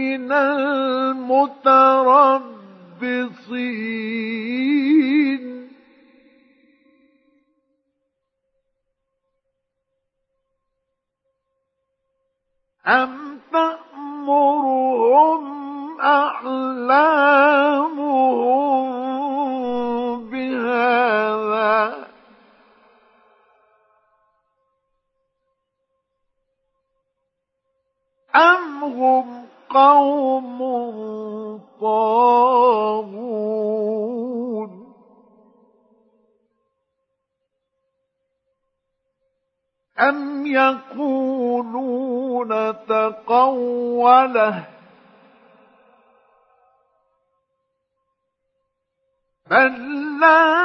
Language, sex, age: Arabic, male, 50-69